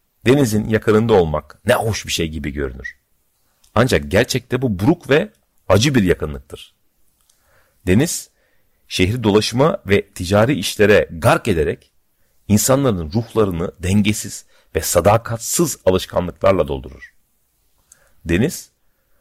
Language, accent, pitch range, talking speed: Turkish, native, 90-115 Hz, 105 wpm